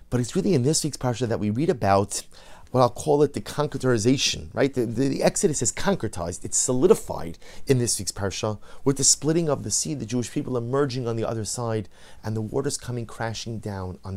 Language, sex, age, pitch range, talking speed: English, male, 30-49, 105-160 Hz, 215 wpm